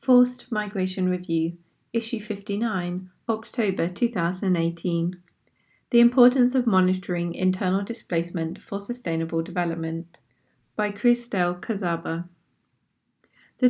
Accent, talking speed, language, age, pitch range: British, 90 wpm, English, 30-49, 175-230 Hz